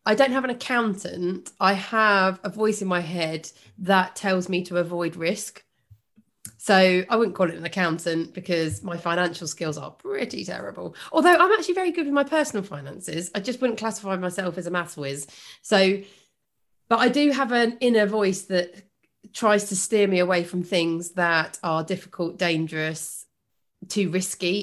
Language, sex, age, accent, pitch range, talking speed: English, female, 30-49, British, 170-210 Hz, 175 wpm